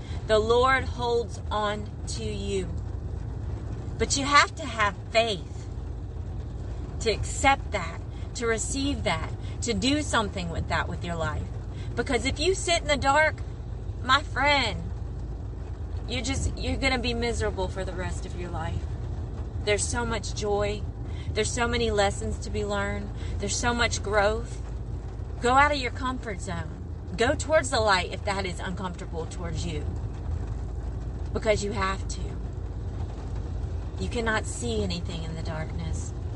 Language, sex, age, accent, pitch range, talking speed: English, female, 30-49, American, 90-105 Hz, 145 wpm